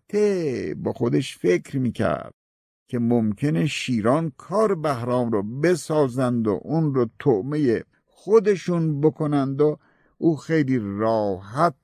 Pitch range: 105-155 Hz